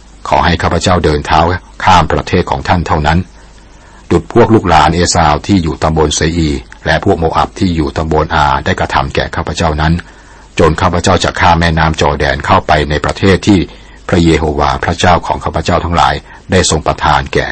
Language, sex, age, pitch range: Thai, male, 60-79, 75-90 Hz